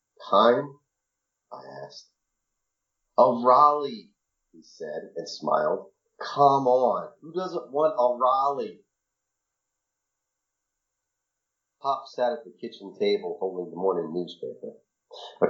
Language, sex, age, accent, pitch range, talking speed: English, male, 40-59, American, 95-155 Hz, 105 wpm